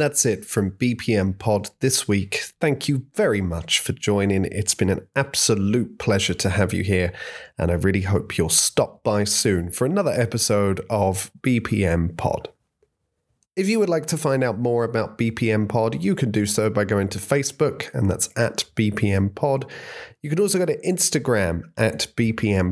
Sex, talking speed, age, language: male, 180 wpm, 30-49, English